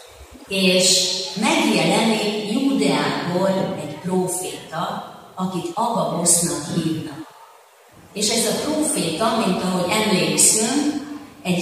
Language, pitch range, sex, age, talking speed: Hungarian, 170-235 Hz, female, 40-59, 85 wpm